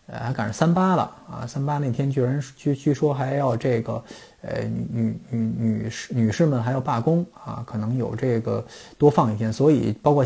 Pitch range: 115-140 Hz